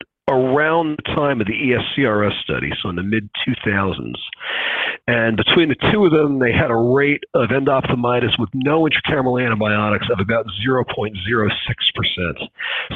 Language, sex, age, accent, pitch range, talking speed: English, male, 40-59, American, 110-145 Hz, 140 wpm